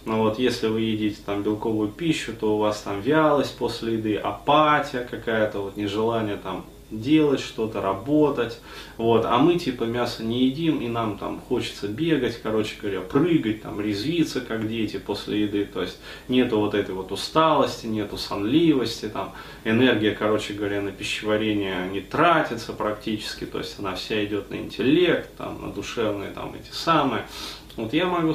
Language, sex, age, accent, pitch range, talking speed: Russian, male, 20-39, native, 105-125 Hz, 165 wpm